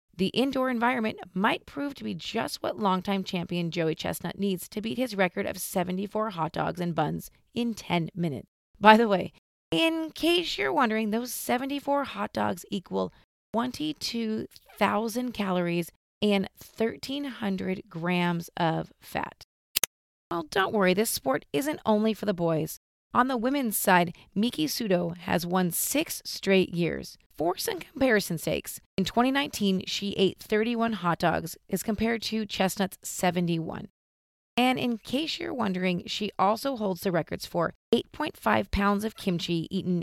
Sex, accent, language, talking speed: female, American, English, 150 wpm